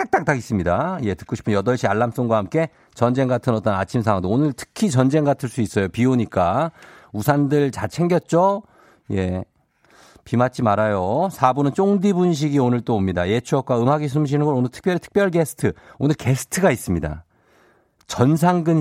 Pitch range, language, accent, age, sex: 105-155 Hz, Korean, native, 50-69, male